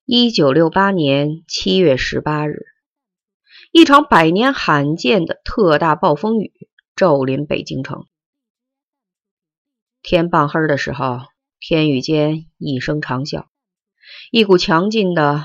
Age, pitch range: 30-49, 140-200 Hz